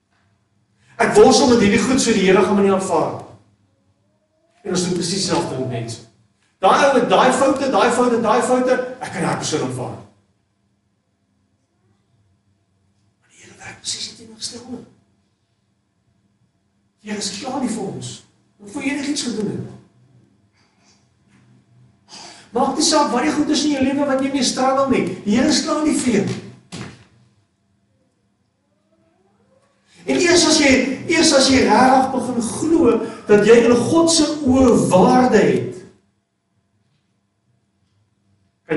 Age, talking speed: 50-69, 140 wpm